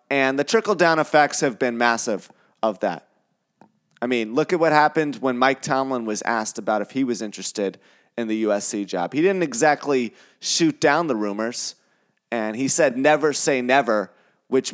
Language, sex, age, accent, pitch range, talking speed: English, male, 30-49, American, 120-165 Hz, 175 wpm